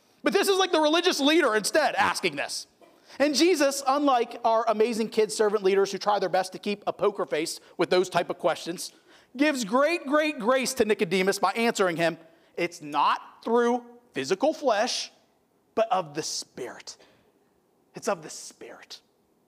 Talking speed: 165 wpm